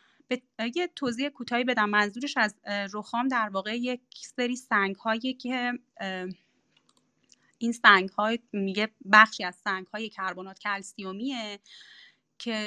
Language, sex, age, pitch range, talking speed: Persian, female, 30-49, 205-255 Hz, 125 wpm